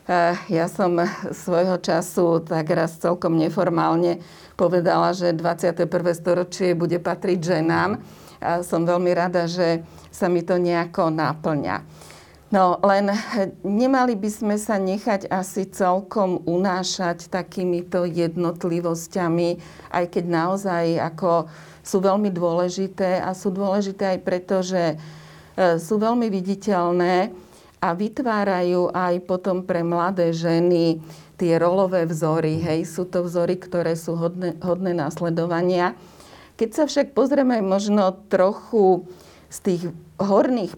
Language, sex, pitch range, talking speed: Slovak, female, 170-190 Hz, 120 wpm